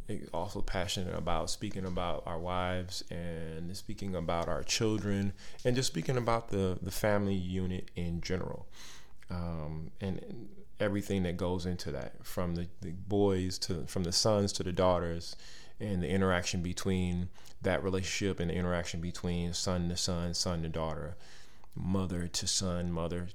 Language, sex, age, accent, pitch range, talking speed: English, male, 30-49, American, 90-100 Hz, 155 wpm